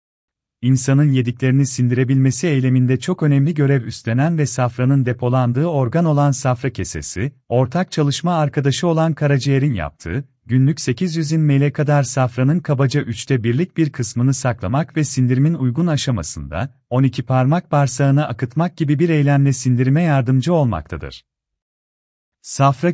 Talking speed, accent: 125 wpm, native